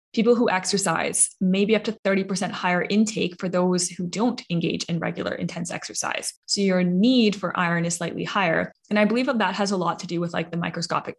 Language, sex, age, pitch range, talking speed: English, female, 20-39, 170-195 Hz, 210 wpm